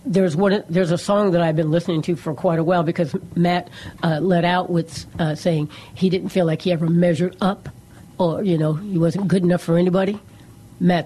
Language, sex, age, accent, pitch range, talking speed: English, female, 60-79, American, 155-185 Hz, 215 wpm